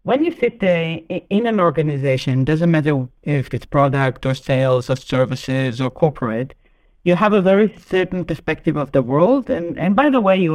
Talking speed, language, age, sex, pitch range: 190 wpm, English, 60-79, male, 140-185 Hz